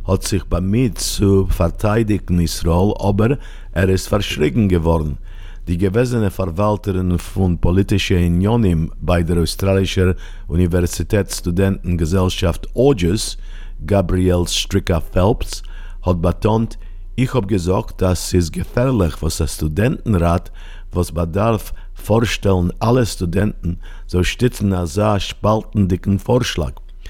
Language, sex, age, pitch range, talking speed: English, male, 50-69, 90-100 Hz, 110 wpm